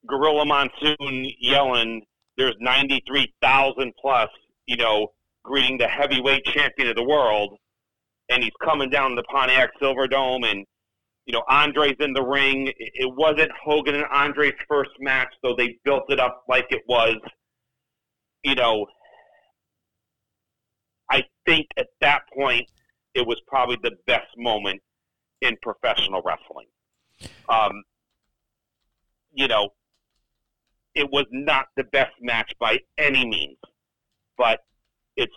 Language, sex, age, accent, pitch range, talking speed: English, male, 40-59, American, 115-140 Hz, 125 wpm